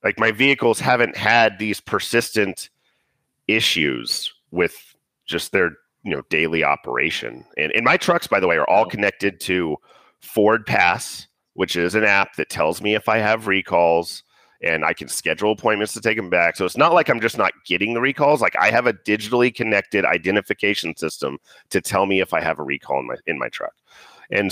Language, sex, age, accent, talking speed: English, male, 40-59, American, 195 wpm